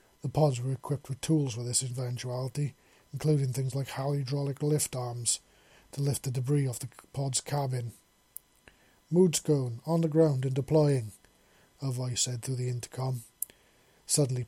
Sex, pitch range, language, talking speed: male, 125-140 Hz, English, 150 wpm